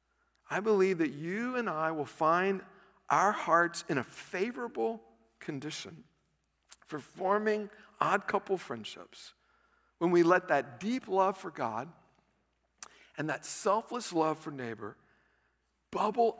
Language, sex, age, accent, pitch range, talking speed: English, male, 50-69, American, 120-170 Hz, 125 wpm